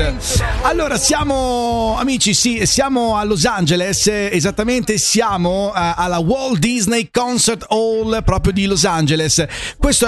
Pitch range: 145-210 Hz